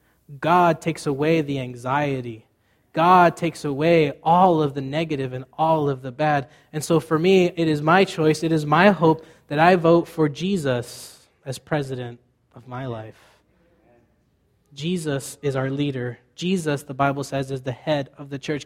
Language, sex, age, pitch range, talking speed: English, male, 20-39, 140-180 Hz, 170 wpm